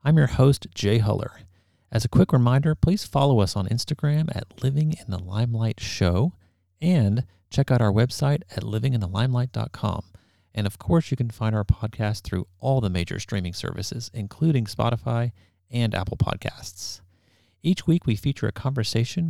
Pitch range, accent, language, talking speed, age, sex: 100-130 Hz, American, English, 150 wpm, 40-59, male